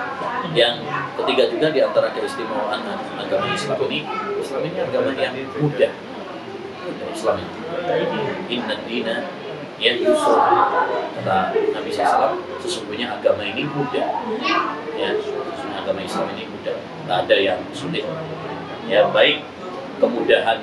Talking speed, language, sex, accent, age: 120 wpm, Indonesian, male, native, 30-49